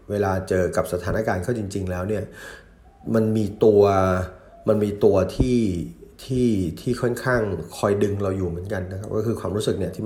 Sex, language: male, Thai